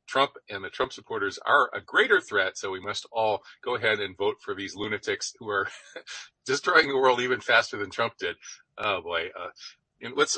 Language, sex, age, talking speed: English, male, 40-59, 200 wpm